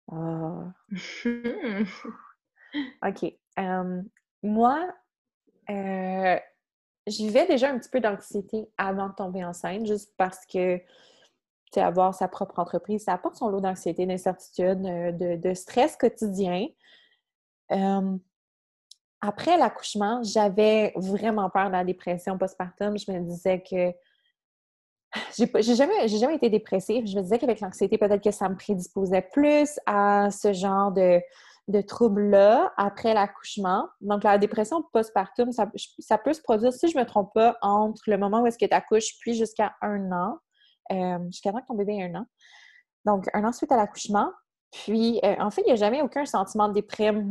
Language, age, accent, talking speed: French, 20-39, Canadian, 160 wpm